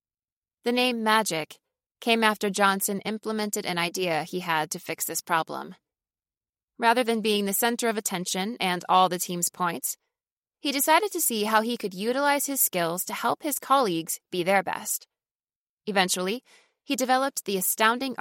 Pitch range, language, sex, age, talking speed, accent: 180-235 Hz, English, female, 20-39, 160 wpm, American